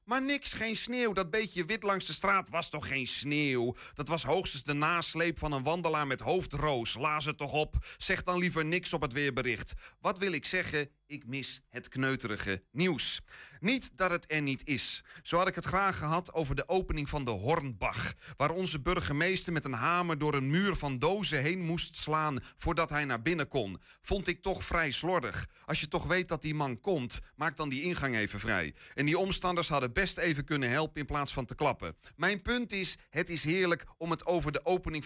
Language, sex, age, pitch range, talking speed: Dutch, male, 30-49, 140-180 Hz, 210 wpm